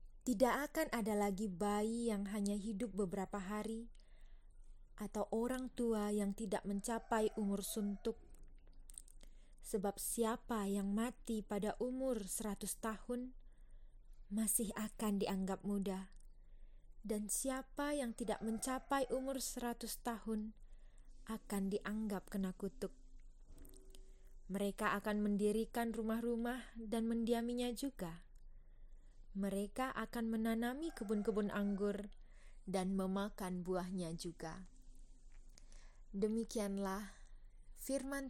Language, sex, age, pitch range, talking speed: Indonesian, female, 20-39, 185-230 Hz, 95 wpm